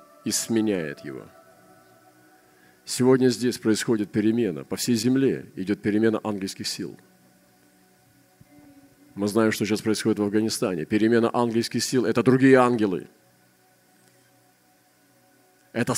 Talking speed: 105 wpm